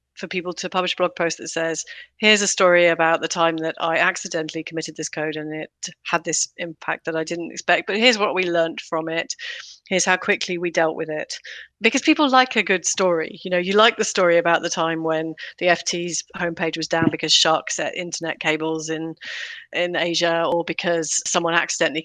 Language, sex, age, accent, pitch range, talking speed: English, female, 30-49, British, 165-195 Hz, 210 wpm